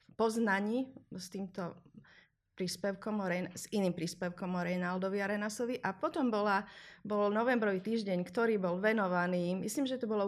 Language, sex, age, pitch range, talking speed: Slovak, female, 30-49, 180-215 Hz, 135 wpm